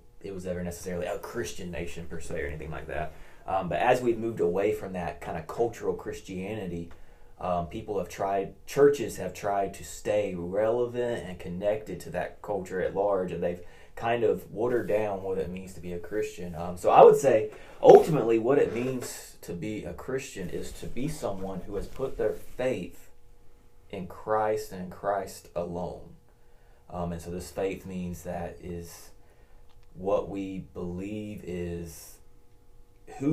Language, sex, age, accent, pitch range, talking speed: English, male, 20-39, American, 85-105 Hz, 170 wpm